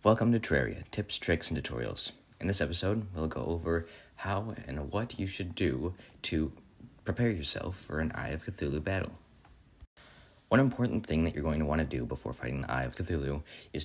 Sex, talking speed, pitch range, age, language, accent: male, 195 wpm, 75-105 Hz, 30-49, English, American